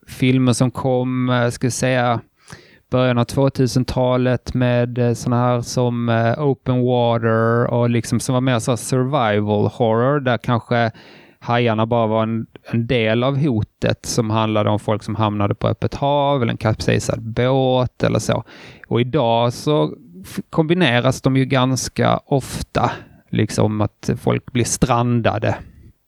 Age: 20-39